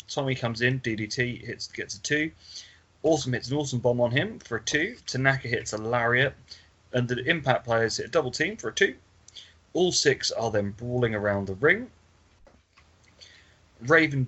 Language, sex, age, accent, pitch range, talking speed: English, male, 30-49, British, 95-125 Hz, 175 wpm